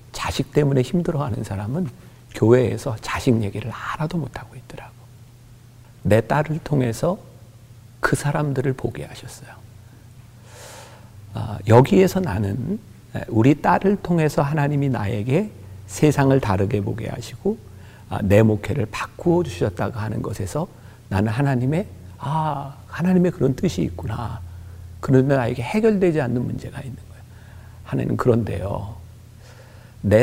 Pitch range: 110-135 Hz